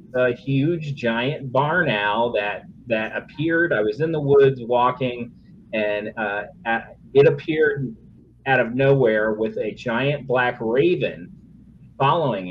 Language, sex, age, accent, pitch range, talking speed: English, male, 30-49, American, 115-140 Hz, 135 wpm